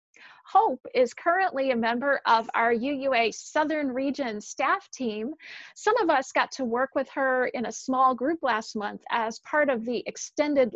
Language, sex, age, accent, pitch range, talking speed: English, female, 40-59, American, 225-300 Hz, 175 wpm